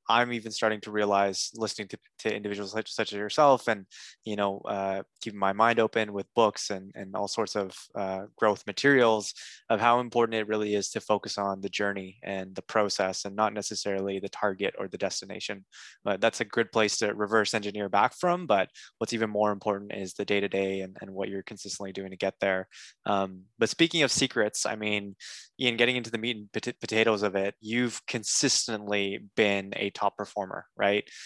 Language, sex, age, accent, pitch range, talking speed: English, male, 20-39, American, 100-120 Hz, 205 wpm